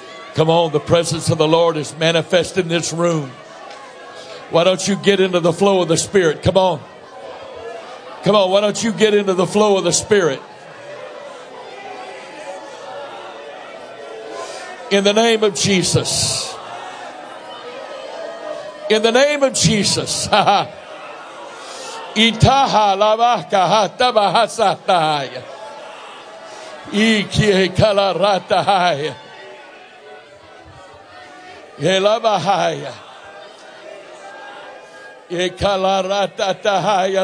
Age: 60-79